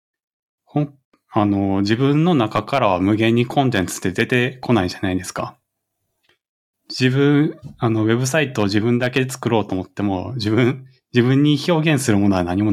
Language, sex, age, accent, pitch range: Japanese, male, 20-39, native, 100-135 Hz